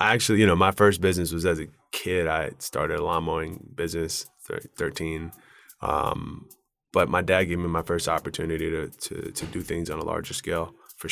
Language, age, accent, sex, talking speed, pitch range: English, 20-39, American, male, 205 wpm, 85-105 Hz